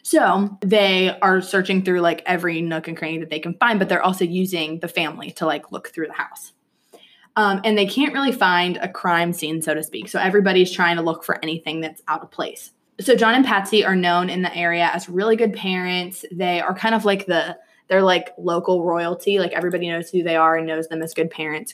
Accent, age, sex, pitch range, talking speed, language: American, 20-39, female, 170-200 Hz, 230 wpm, English